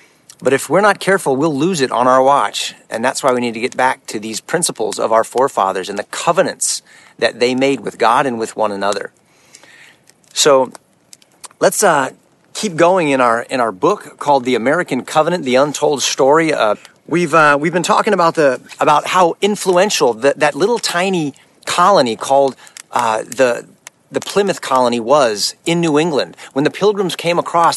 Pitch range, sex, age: 140-195 Hz, male, 40-59